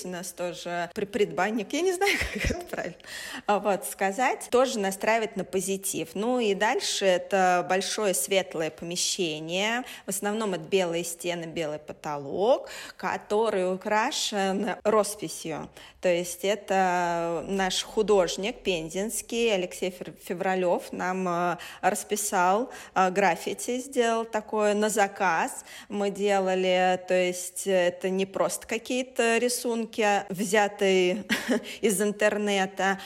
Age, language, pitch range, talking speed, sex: 20-39, Russian, 180-215 Hz, 105 wpm, female